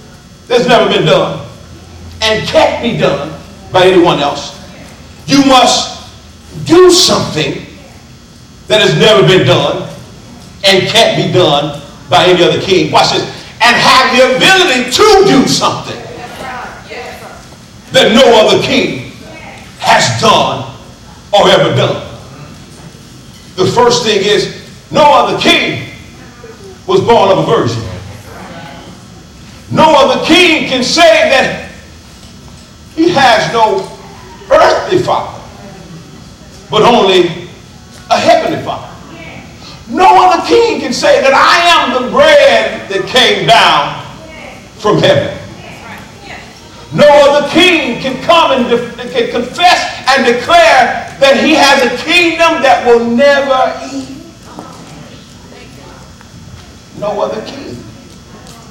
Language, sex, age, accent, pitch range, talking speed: English, male, 40-59, American, 195-300 Hz, 110 wpm